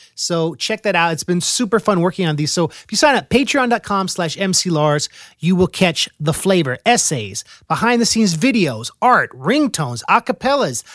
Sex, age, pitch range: male, 30-49, 150-205 Hz